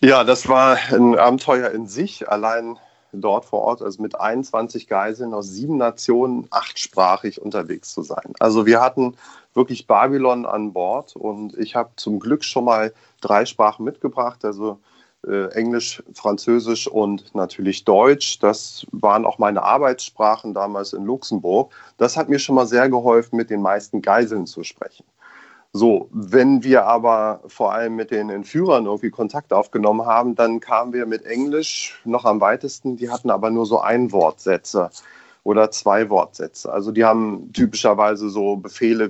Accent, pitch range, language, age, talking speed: German, 105-125 Hz, German, 30-49, 160 wpm